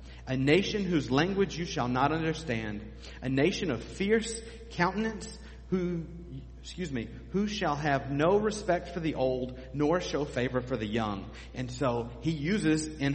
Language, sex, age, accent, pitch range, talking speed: English, male, 40-59, American, 125-180 Hz, 160 wpm